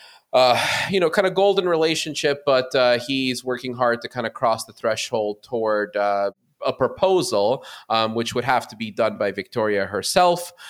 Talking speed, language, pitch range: 180 wpm, English, 105-130 Hz